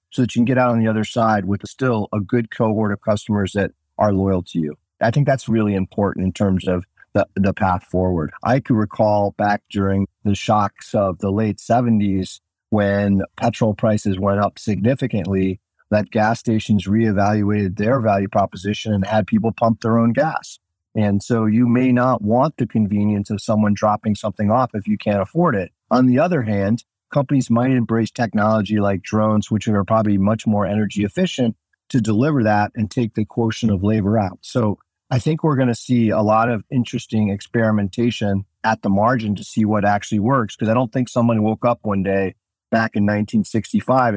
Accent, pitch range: American, 100-115 Hz